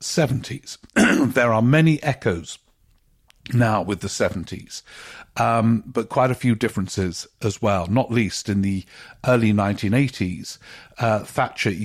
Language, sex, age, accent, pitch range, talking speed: English, male, 50-69, British, 100-120 Hz, 125 wpm